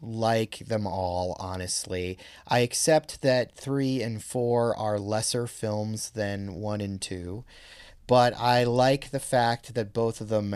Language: English